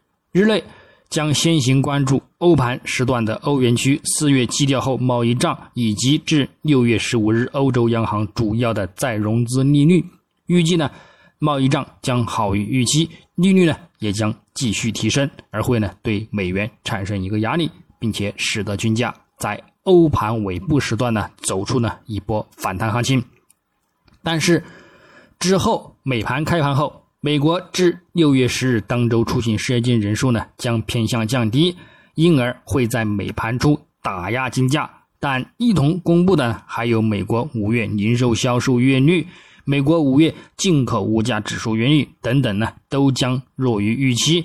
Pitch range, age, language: 115-150 Hz, 20-39, Chinese